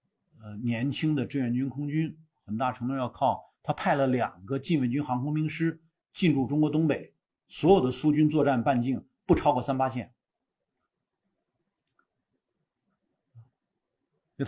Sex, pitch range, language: male, 125-155 Hz, Chinese